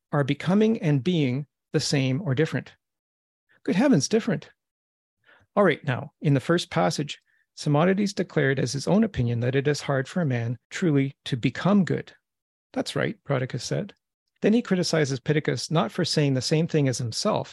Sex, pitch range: male, 135-175 Hz